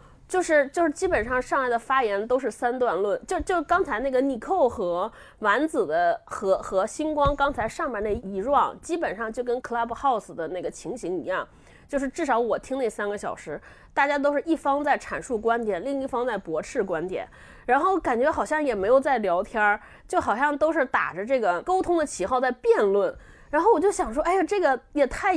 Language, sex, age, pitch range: Chinese, female, 20-39, 230-335 Hz